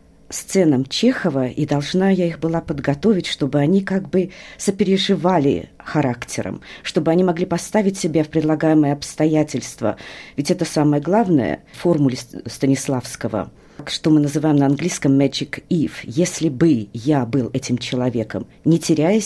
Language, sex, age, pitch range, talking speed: Russian, female, 40-59, 140-195 Hz, 135 wpm